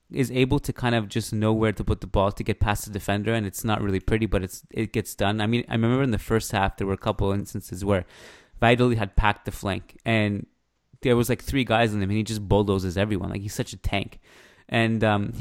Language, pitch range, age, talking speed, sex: English, 100-120 Hz, 20-39, 255 wpm, male